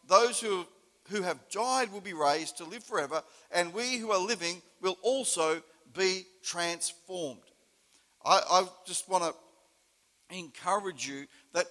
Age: 50-69